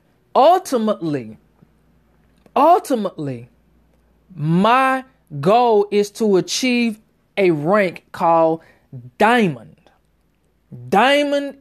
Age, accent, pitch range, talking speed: 20-39, American, 165-235 Hz, 60 wpm